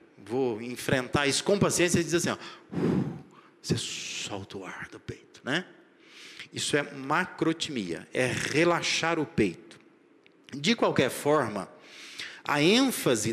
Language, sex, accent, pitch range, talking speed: Portuguese, male, Brazilian, 150-220 Hz, 130 wpm